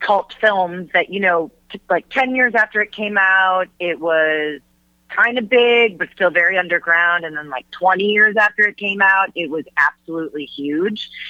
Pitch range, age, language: 155-200 Hz, 30-49, English